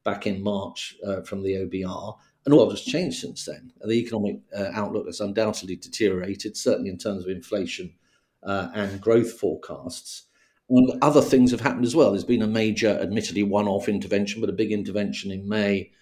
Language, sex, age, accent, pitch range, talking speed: English, male, 50-69, British, 100-125 Hz, 185 wpm